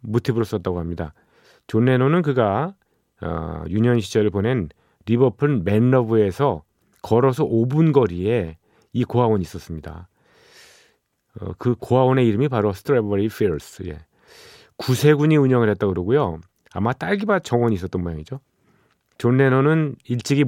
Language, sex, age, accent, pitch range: Korean, male, 40-59, native, 100-135 Hz